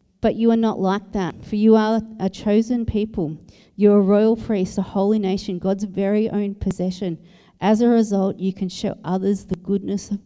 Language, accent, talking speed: English, Australian, 195 wpm